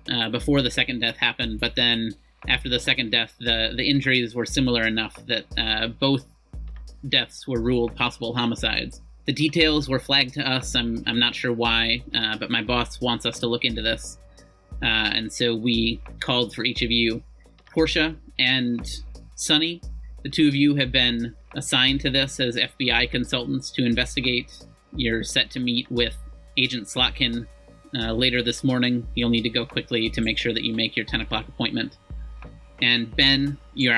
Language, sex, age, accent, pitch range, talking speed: English, male, 30-49, American, 115-130 Hz, 180 wpm